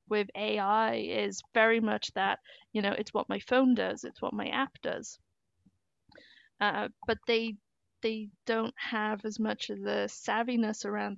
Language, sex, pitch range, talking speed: English, female, 200-225 Hz, 160 wpm